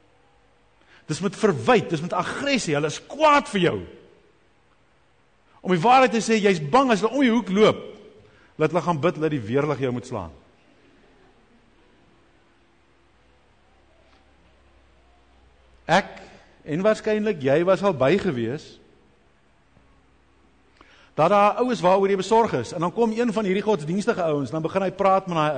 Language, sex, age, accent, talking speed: English, male, 50-69, Dutch, 150 wpm